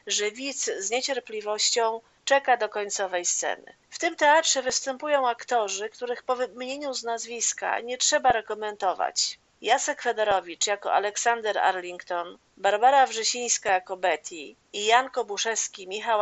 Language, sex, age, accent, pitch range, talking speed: Polish, female, 40-59, native, 200-265 Hz, 125 wpm